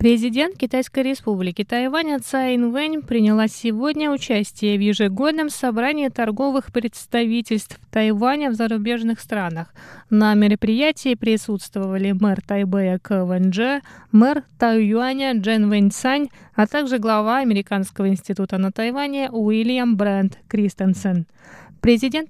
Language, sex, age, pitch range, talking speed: Russian, female, 20-39, 200-245 Hz, 110 wpm